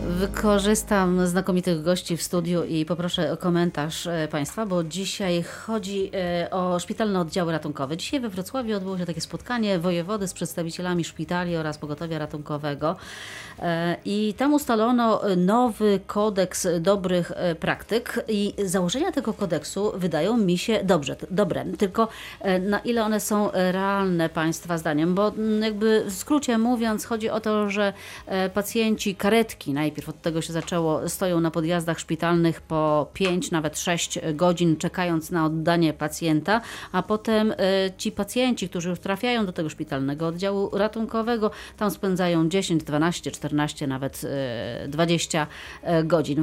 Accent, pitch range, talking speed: native, 165-210 Hz, 135 wpm